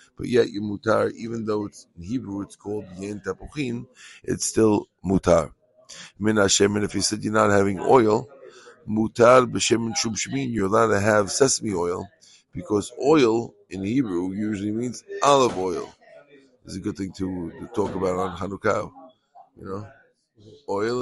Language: English